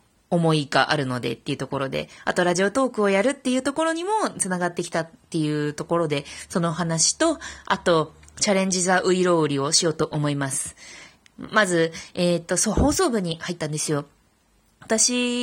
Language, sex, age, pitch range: Japanese, female, 20-39, 160-235 Hz